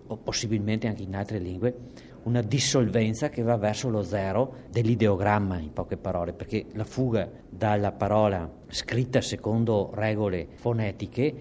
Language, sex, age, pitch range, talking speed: Italian, male, 50-69, 95-120 Hz, 135 wpm